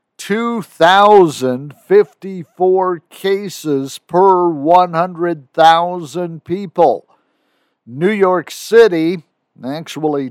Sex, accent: male, American